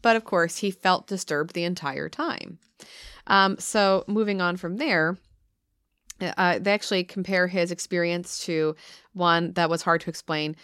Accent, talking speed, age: American, 160 wpm, 30-49